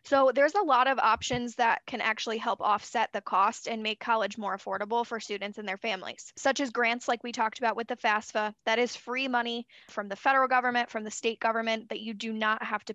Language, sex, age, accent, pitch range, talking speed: English, female, 10-29, American, 215-255 Hz, 235 wpm